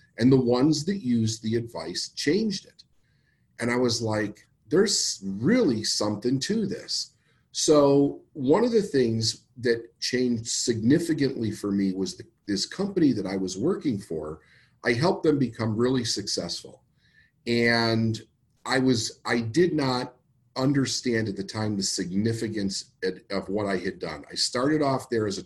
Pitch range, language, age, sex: 100-125 Hz, English, 40-59, male